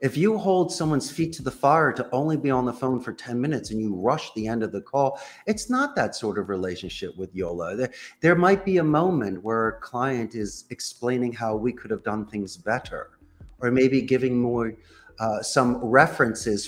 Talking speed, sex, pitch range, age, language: 210 wpm, male, 110-145 Hz, 40-59, English